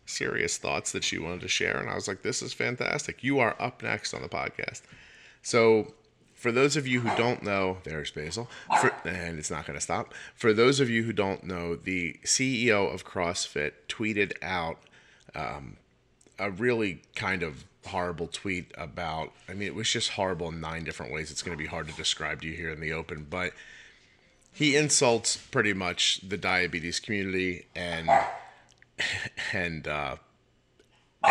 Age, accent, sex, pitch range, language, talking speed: 30-49, American, male, 85-110 Hz, English, 175 wpm